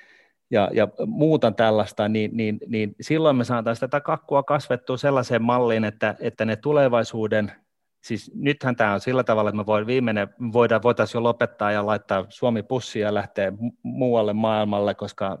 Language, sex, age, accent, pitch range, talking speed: Finnish, male, 30-49, native, 105-145 Hz, 155 wpm